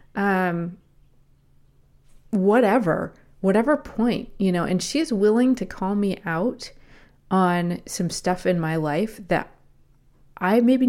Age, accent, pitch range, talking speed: 30-49, American, 175-230 Hz, 125 wpm